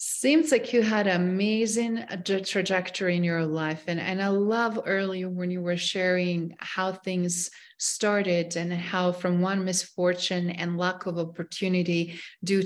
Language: English